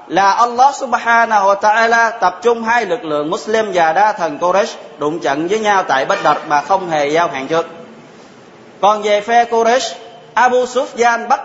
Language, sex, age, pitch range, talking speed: Vietnamese, male, 20-39, 185-235 Hz, 170 wpm